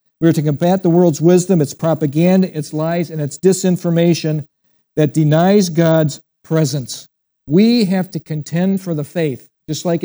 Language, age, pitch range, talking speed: English, 50-69, 150-185 Hz, 160 wpm